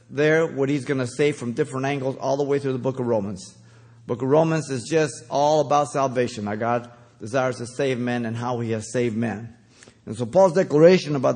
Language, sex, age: English, male, 50-69